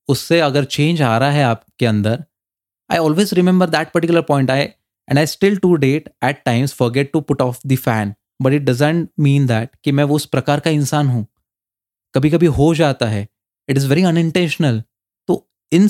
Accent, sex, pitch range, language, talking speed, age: native, male, 120-155 Hz, Hindi, 200 wpm, 20-39